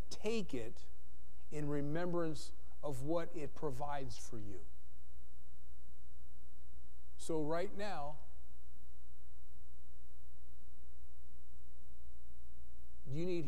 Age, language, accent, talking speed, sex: 40-59, English, American, 70 wpm, male